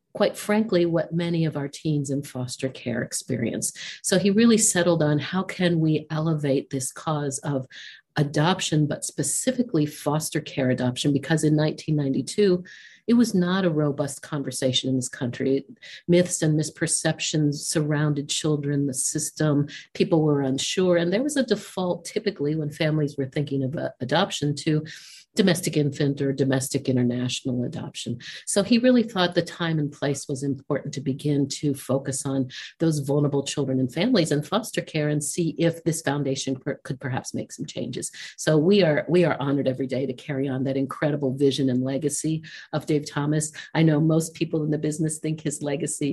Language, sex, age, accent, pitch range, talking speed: English, female, 50-69, American, 135-165 Hz, 175 wpm